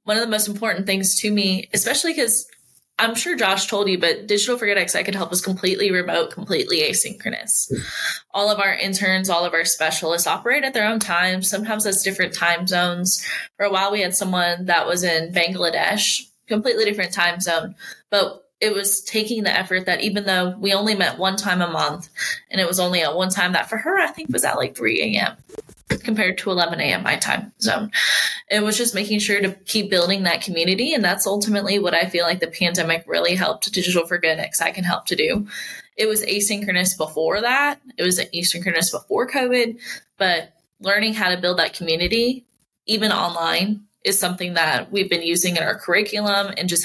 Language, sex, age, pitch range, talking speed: English, female, 20-39, 175-210 Hz, 205 wpm